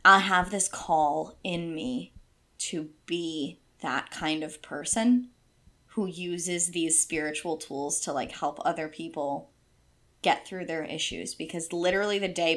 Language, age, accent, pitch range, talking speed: English, 20-39, American, 160-190 Hz, 145 wpm